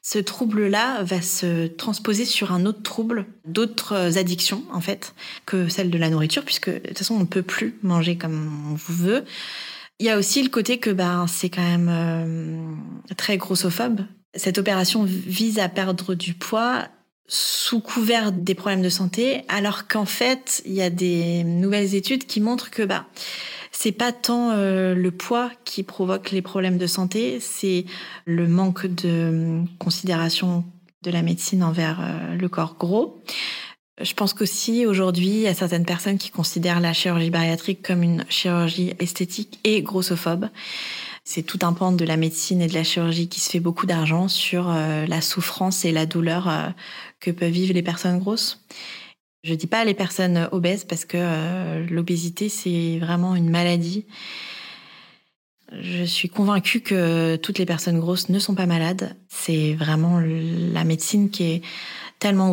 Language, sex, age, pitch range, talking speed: French, female, 20-39, 170-200 Hz, 175 wpm